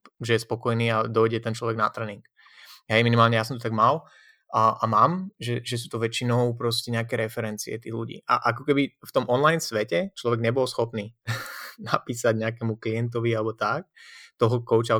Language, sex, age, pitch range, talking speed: Slovak, male, 20-39, 115-135 Hz, 180 wpm